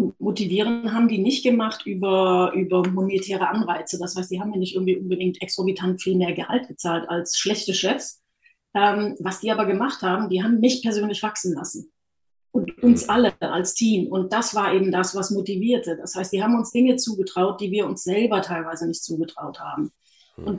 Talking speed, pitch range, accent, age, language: 190 wpm, 185-230 Hz, German, 30-49, German